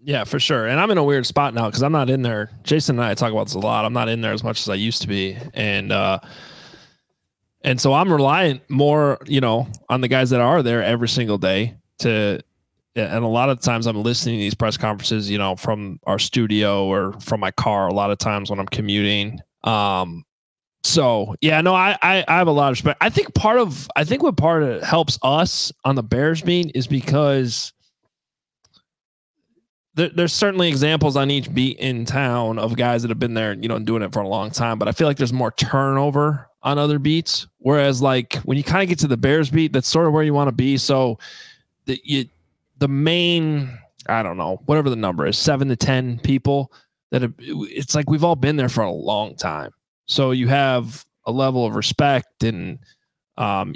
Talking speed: 225 wpm